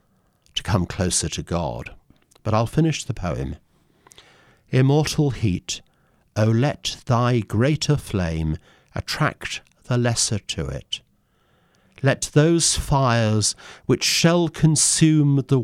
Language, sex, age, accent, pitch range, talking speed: English, male, 50-69, British, 90-135 Hz, 110 wpm